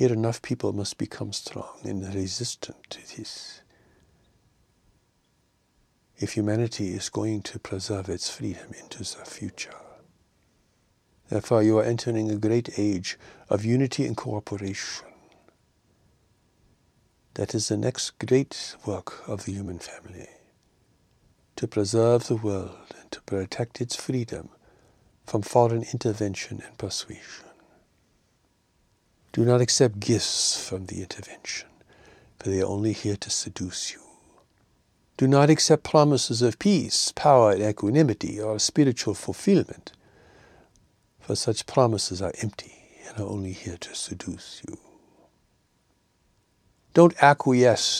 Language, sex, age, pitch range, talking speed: English, male, 60-79, 100-120 Hz, 120 wpm